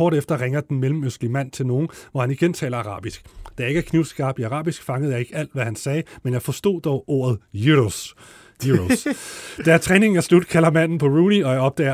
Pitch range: 125-165 Hz